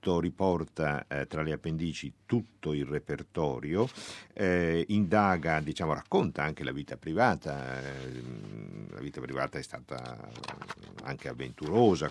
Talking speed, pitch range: 120 wpm, 70-95 Hz